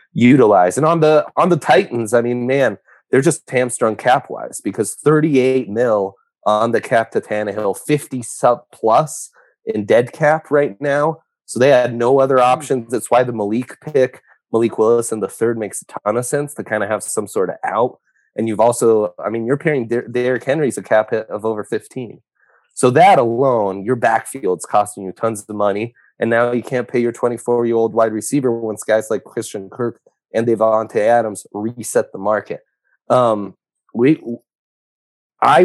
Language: English